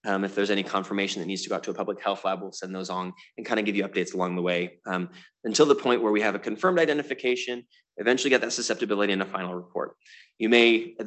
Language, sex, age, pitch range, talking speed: English, male, 20-39, 95-110 Hz, 265 wpm